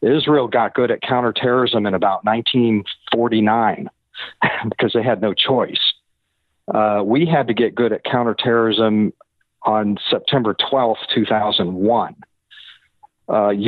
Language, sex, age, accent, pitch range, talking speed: English, male, 50-69, American, 110-125 Hz, 110 wpm